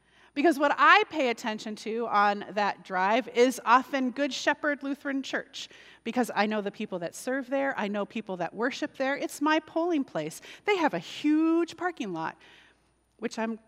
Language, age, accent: English, 30-49, American